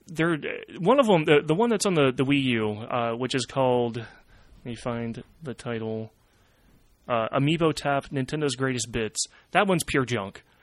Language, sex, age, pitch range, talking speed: English, male, 30-49, 115-150 Hz, 180 wpm